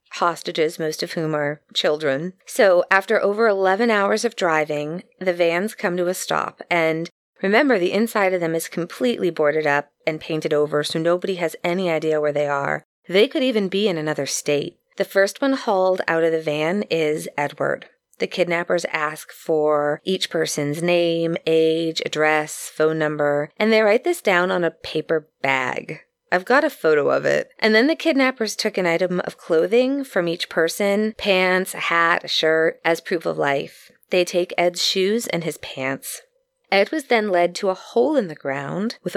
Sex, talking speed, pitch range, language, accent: female, 185 wpm, 160-215 Hz, English, American